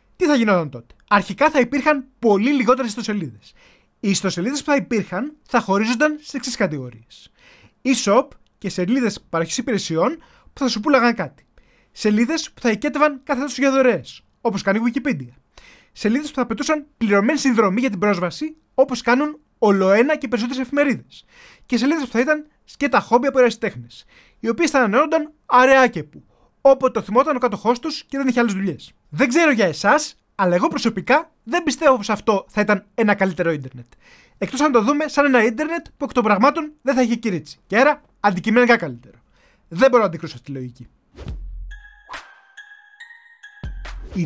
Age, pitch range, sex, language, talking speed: 20-39, 195-285 Hz, male, Greek, 165 wpm